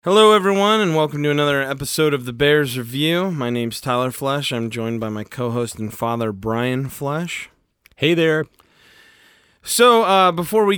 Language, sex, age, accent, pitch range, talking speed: English, male, 30-49, American, 125-165 Hz, 165 wpm